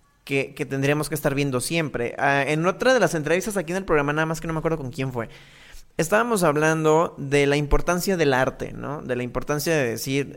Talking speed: 225 wpm